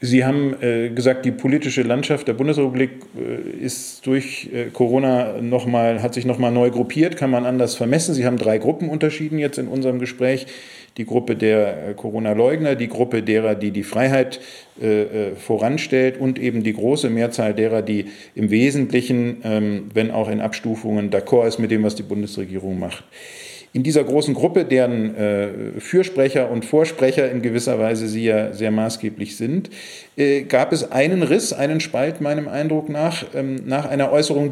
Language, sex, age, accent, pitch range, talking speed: German, male, 40-59, German, 110-145 Hz, 165 wpm